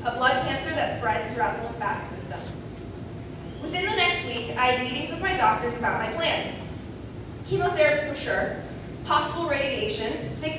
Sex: female